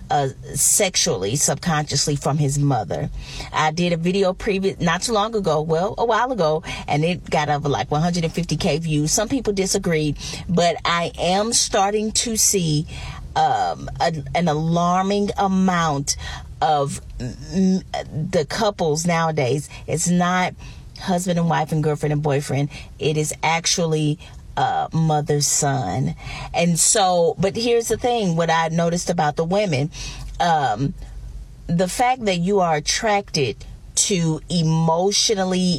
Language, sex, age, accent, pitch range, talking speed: English, female, 40-59, American, 150-200 Hz, 130 wpm